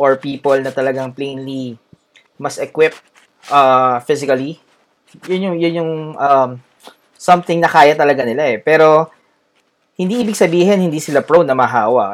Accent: Filipino